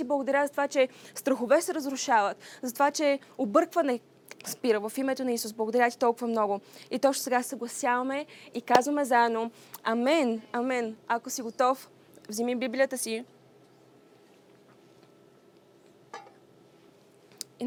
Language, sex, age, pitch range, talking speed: Bulgarian, female, 20-39, 235-275 Hz, 120 wpm